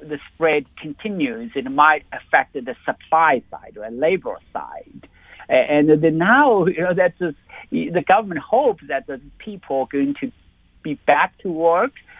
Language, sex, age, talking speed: English, male, 60-79, 160 wpm